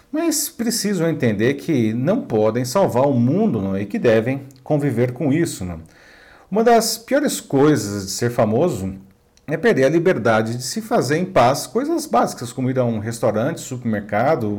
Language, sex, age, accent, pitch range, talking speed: Portuguese, male, 50-69, Brazilian, 115-170 Hz, 160 wpm